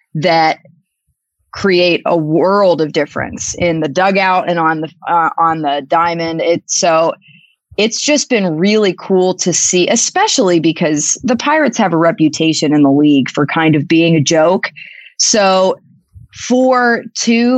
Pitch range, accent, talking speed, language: 160-210 Hz, American, 150 wpm, English